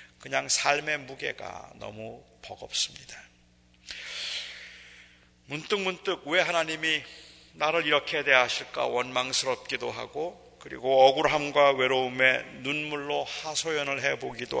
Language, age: Korean, 40-59